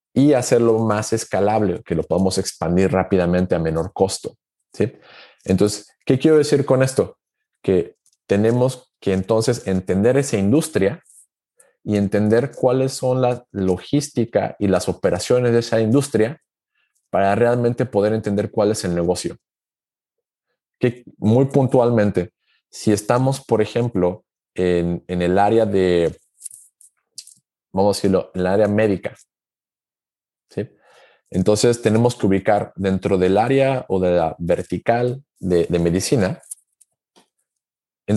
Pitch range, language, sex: 95-120 Hz, Spanish, male